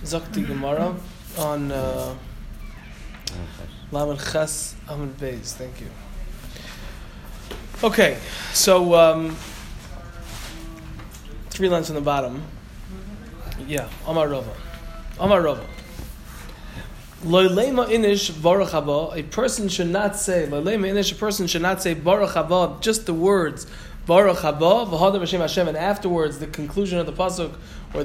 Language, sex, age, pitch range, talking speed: English, male, 20-39, 155-200 Hz, 105 wpm